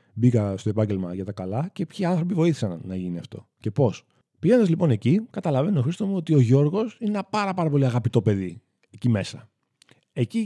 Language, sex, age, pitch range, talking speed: Greek, male, 30-49, 100-135 Hz, 200 wpm